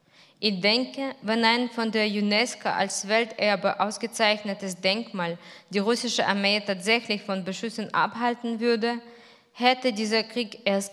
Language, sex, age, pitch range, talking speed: German, female, 20-39, 195-225 Hz, 125 wpm